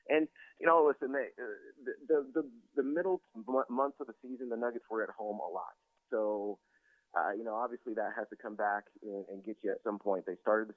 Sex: male